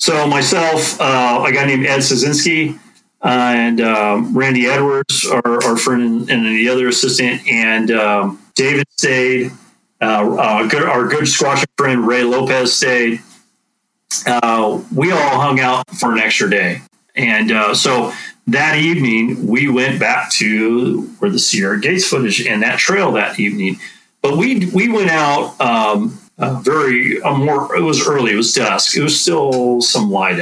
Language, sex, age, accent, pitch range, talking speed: English, male, 40-59, American, 110-140 Hz, 165 wpm